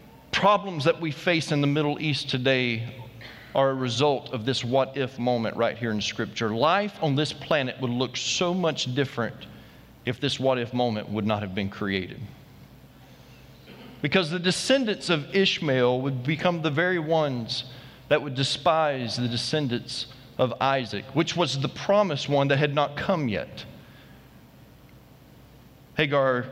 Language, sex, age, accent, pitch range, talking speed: English, male, 40-59, American, 130-180 Hz, 155 wpm